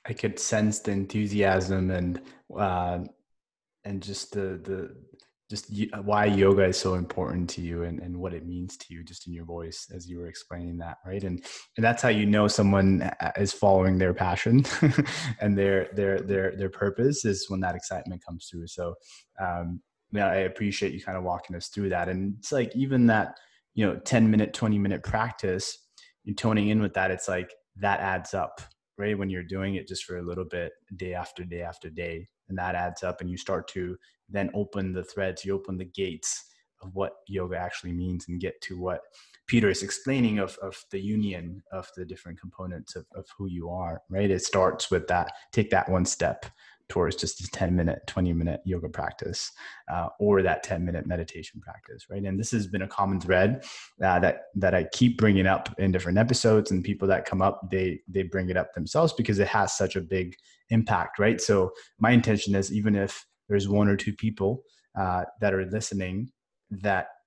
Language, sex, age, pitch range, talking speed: English, male, 20-39, 90-105 Hz, 200 wpm